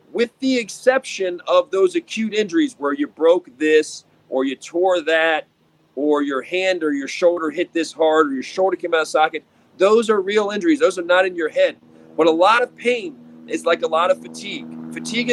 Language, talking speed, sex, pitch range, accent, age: English, 210 wpm, male, 180-275 Hz, American, 40-59